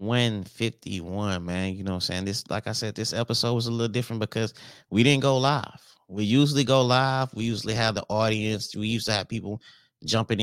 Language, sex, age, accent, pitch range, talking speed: English, male, 30-49, American, 100-115 Hz, 215 wpm